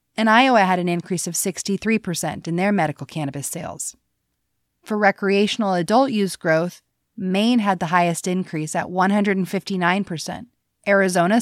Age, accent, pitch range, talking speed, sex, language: 30-49, American, 175-215 Hz, 130 wpm, female, English